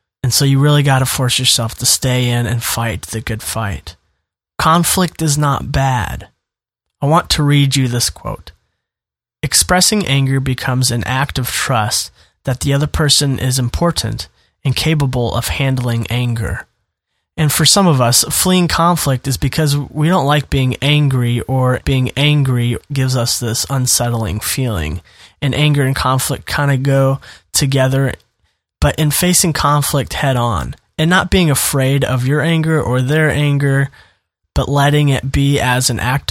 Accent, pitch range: American, 115-145 Hz